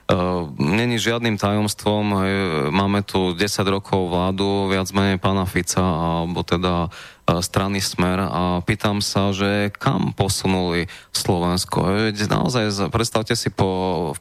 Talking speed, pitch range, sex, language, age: 120 wpm, 95-110 Hz, male, Slovak, 20-39